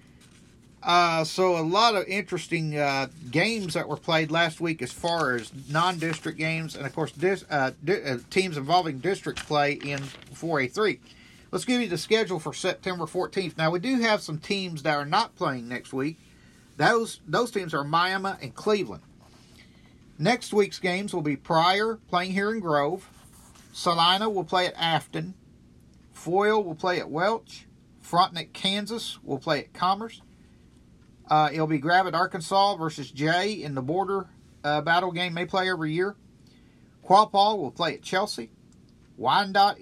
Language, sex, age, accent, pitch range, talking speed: English, male, 40-59, American, 145-190 Hz, 160 wpm